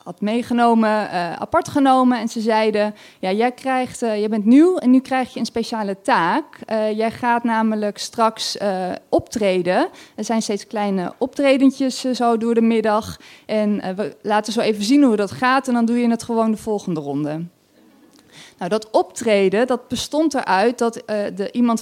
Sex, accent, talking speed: female, Dutch, 185 wpm